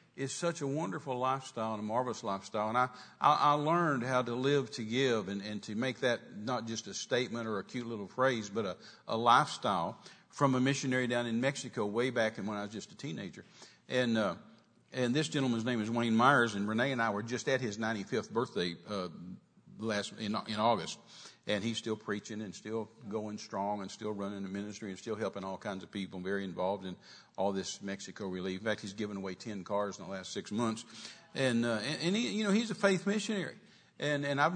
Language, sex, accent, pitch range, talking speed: English, male, American, 105-130 Hz, 220 wpm